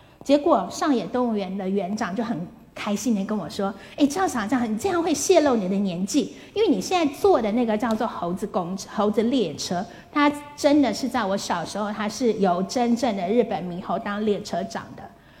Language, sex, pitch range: Chinese, female, 205-260 Hz